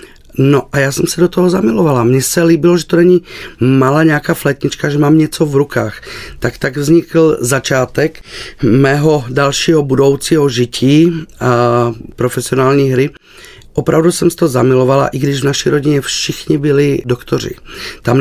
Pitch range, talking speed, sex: 120-155 Hz, 155 wpm, male